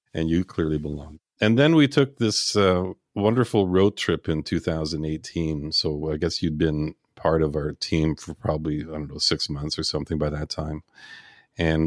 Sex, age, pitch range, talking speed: male, 50-69, 75-95 Hz, 185 wpm